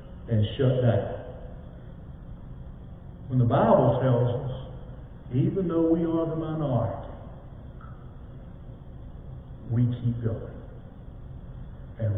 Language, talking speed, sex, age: English, 90 wpm, male, 60-79